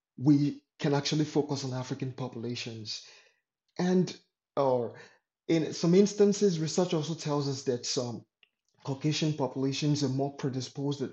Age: 30-49